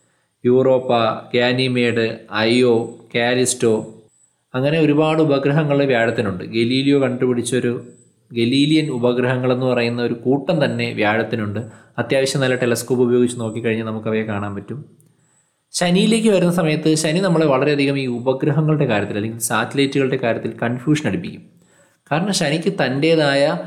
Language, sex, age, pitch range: Malayalam, male, 20-39, 120-155 Hz